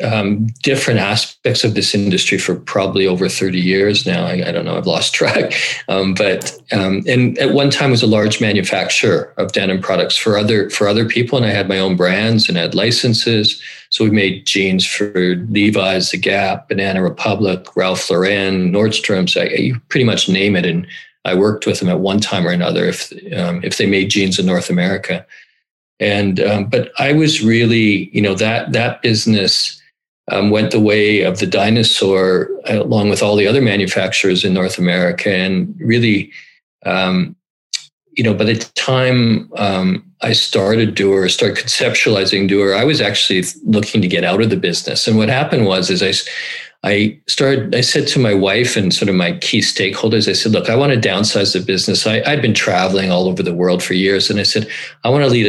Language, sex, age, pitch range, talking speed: English, male, 40-59, 95-115 Hz, 200 wpm